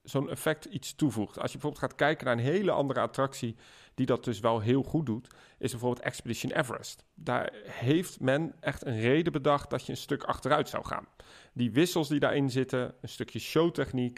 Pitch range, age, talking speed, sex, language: 125-155 Hz, 40-59, 200 wpm, male, Dutch